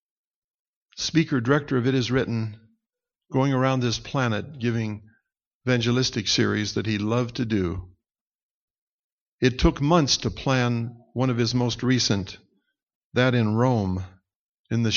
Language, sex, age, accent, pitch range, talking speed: English, male, 60-79, American, 110-135 Hz, 130 wpm